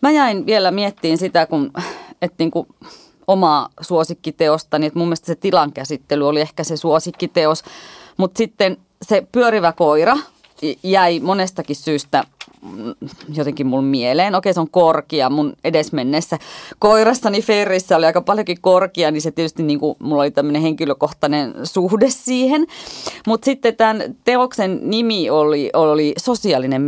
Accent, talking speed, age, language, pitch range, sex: native, 135 wpm, 30-49, Finnish, 155-200 Hz, female